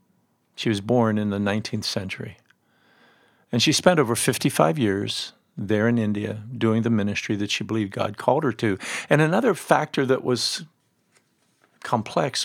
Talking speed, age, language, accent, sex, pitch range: 155 wpm, 50-69, English, American, male, 110-150 Hz